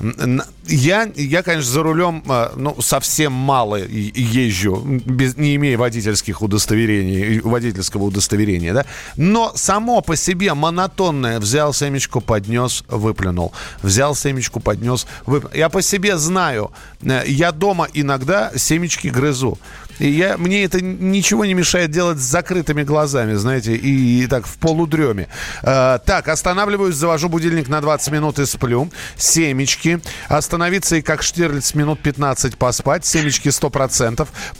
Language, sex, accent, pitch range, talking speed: Russian, male, native, 125-170 Hz, 130 wpm